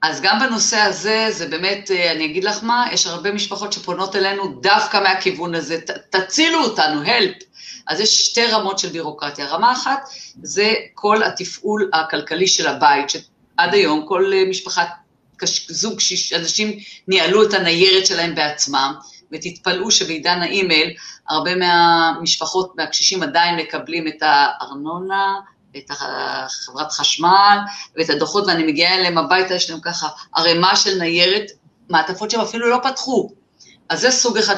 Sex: female